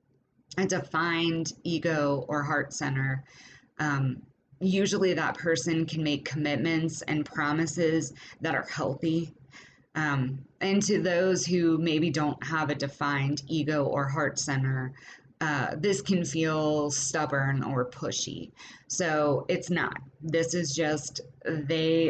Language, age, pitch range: English, 20-39, 140-165 Hz